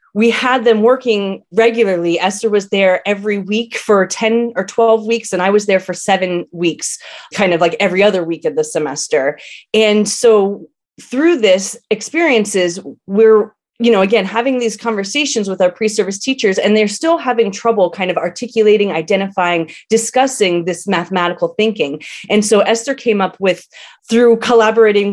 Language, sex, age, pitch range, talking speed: English, female, 30-49, 185-230 Hz, 160 wpm